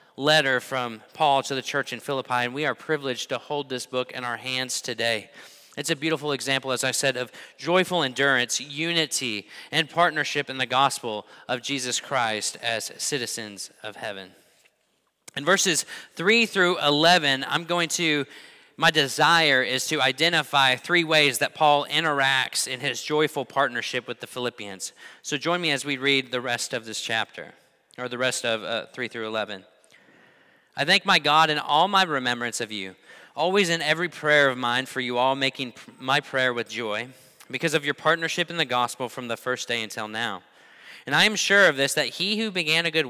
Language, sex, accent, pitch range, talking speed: English, male, American, 125-155 Hz, 190 wpm